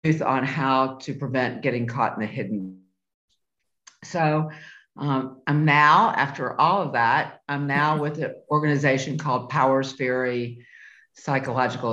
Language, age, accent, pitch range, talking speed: English, 50-69, American, 125-155 Hz, 130 wpm